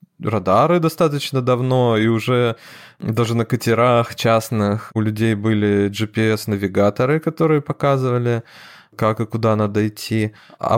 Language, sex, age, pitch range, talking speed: Russian, male, 20-39, 110-130 Hz, 115 wpm